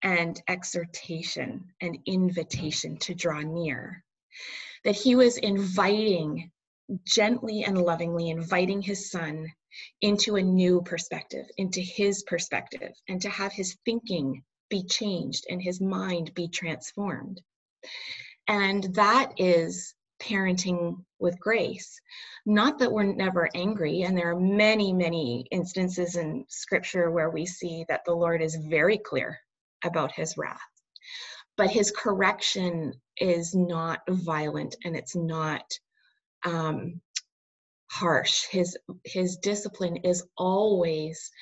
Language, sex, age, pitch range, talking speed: English, female, 30-49, 165-200 Hz, 120 wpm